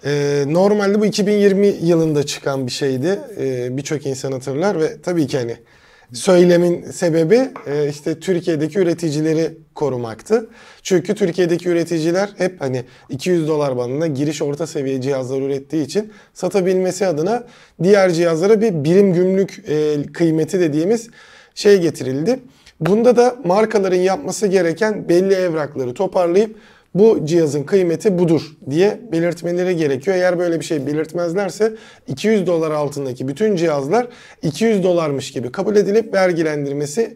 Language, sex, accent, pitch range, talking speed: Turkish, male, native, 150-205 Hz, 125 wpm